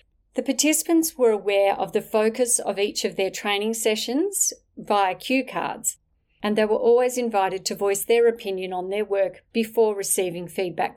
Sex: female